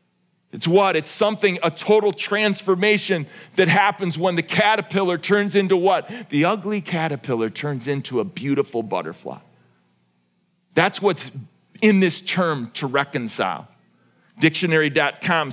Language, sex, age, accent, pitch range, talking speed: English, male, 40-59, American, 145-205 Hz, 120 wpm